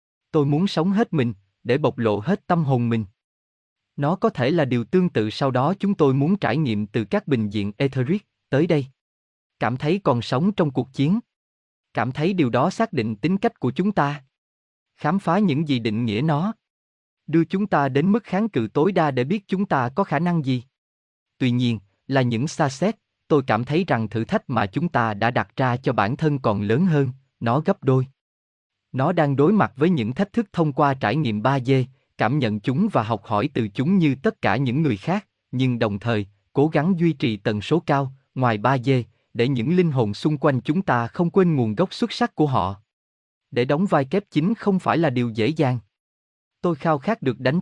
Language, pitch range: Vietnamese, 115-165 Hz